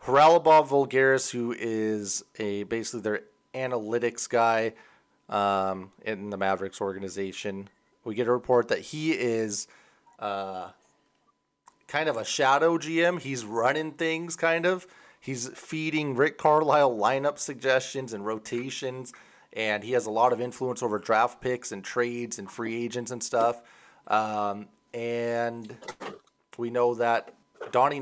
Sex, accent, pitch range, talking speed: male, American, 110-130 Hz, 135 wpm